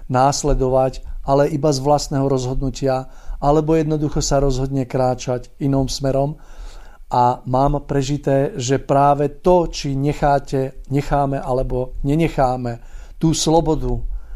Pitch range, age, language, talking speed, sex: 125-140 Hz, 50-69, Slovak, 110 wpm, male